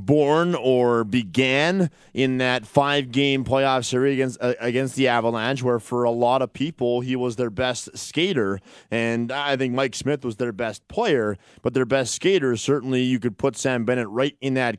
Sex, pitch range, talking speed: male, 115-140 Hz, 185 wpm